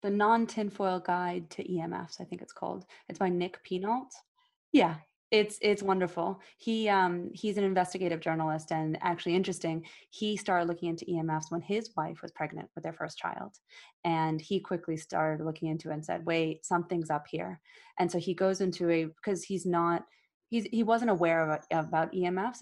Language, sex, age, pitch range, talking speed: English, female, 20-39, 155-180 Hz, 180 wpm